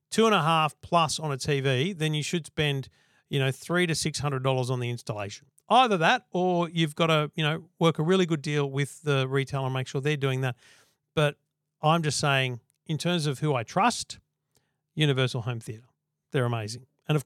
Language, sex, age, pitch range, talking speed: English, male, 40-59, 135-165 Hz, 205 wpm